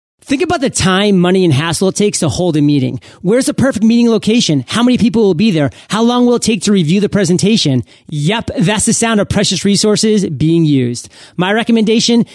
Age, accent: 30-49, American